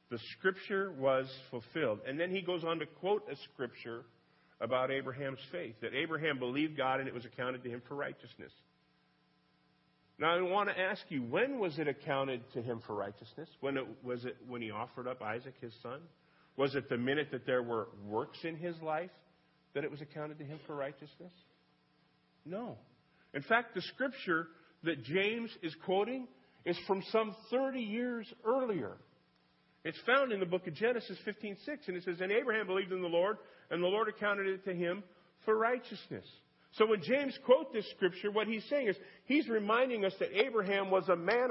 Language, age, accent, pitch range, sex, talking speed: English, 50-69, American, 125-205 Hz, male, 190 wpm